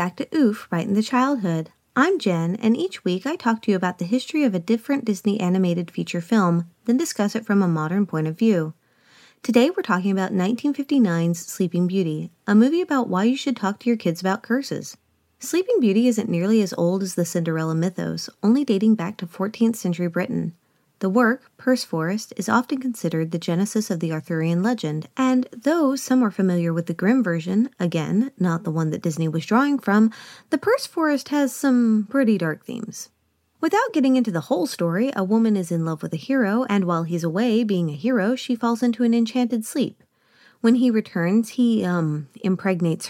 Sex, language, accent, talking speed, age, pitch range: female, English, American, 200 wpm, 30-49, 175-255 Hz